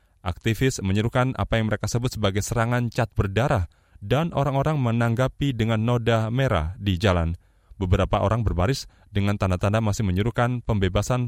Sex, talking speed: male, 140 wpm